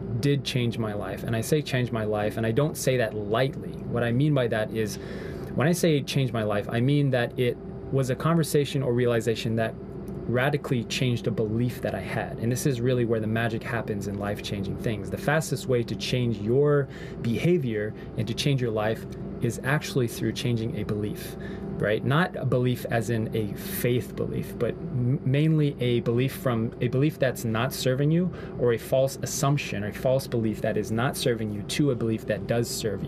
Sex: male